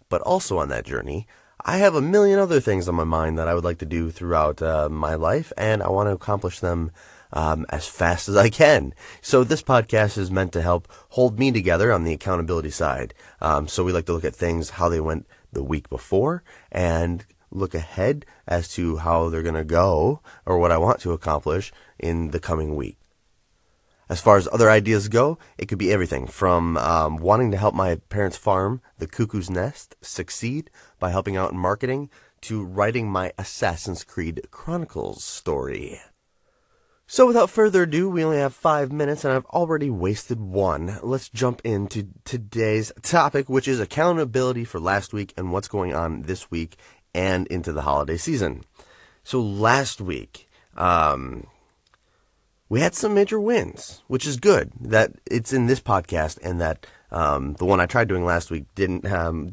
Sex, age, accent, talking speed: male, 30-49, American, 185 wpm